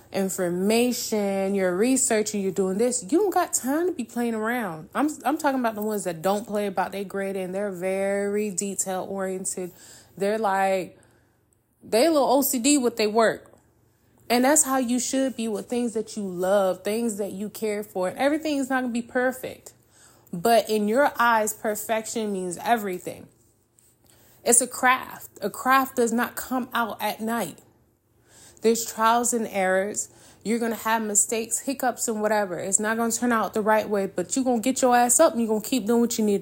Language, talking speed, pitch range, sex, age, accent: English, 195 wpm, 195-250 Hz, female, 20-39, American